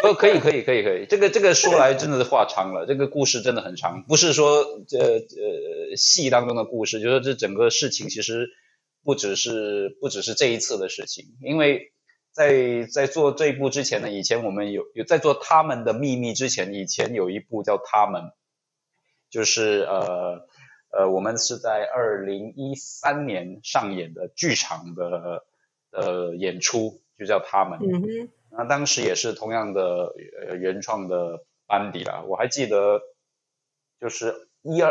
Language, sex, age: Chinese, male, 20-39